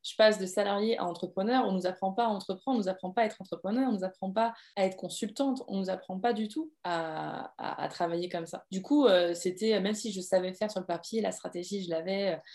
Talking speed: 275 wpm